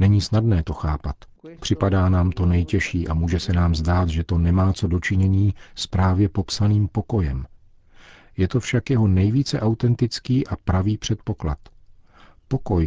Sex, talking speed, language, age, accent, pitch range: male, 150 wpm, Czech, 40-59, native, 85-105 Hz